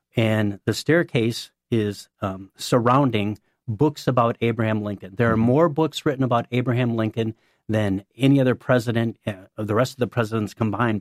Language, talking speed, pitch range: English, 160 wpm, 110-130 Hz